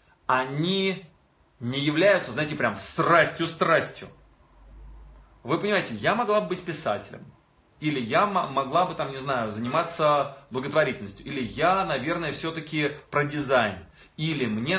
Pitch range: 120-165 Hz